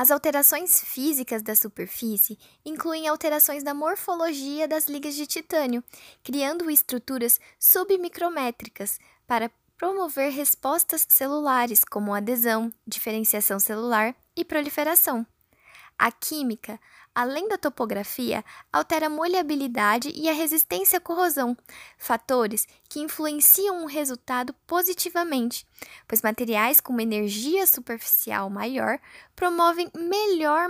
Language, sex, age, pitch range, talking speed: Portuguese, female, 10-29, 235-310 Hz, 105 wpm